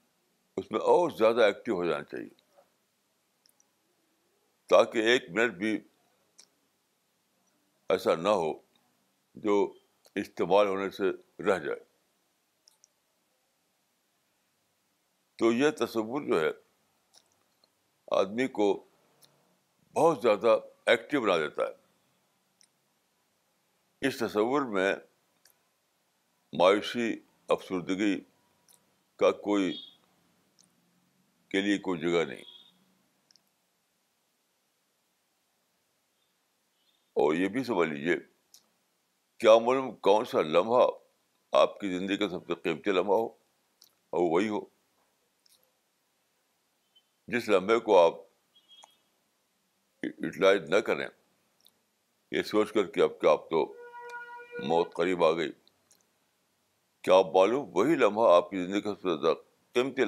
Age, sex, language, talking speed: 60-79, male, Urdu, 100 wpm